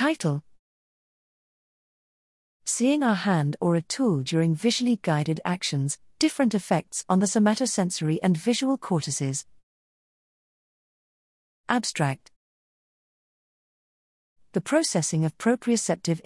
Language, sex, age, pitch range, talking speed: English, female, 40-59, 160-220 Hz, 90 wpm